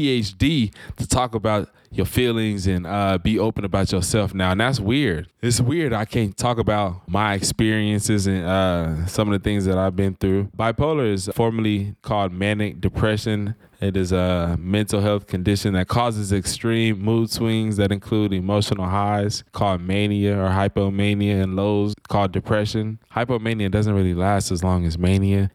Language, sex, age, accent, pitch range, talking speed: English, male, 20-39, American, 95-110 Hz, 165 wpm